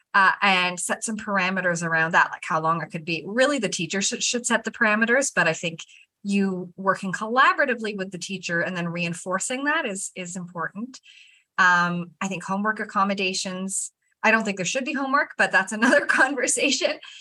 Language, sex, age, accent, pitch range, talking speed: English, female, 20-39, American, 175-230 Hz, 185 wpm